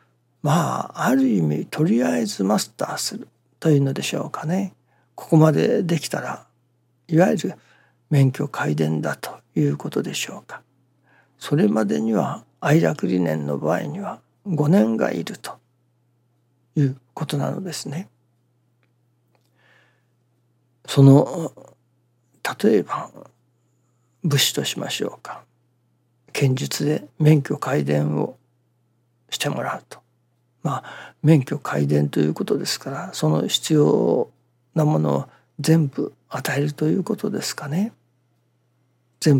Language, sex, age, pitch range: Japanese, male, 60-79, 120-150 Hz